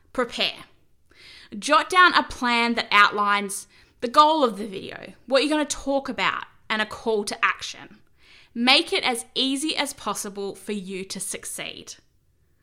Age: 10-29